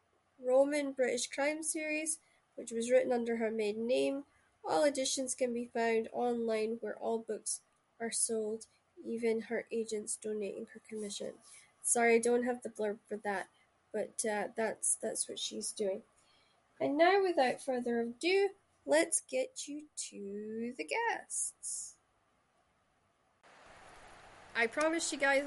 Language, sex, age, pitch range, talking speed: English, female, 10-29, 205-260 Hz, 135 wpm